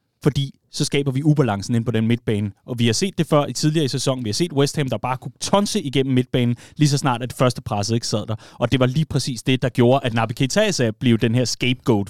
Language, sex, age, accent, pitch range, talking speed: Danish, male, 30-49, native, 120-155 Hz, 275 wpm